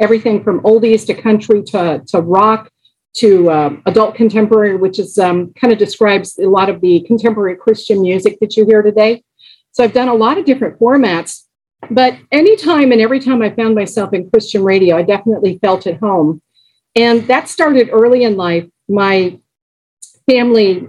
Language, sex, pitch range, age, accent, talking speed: English, female, 195-230 Hz, 50-69, American, 175 wpm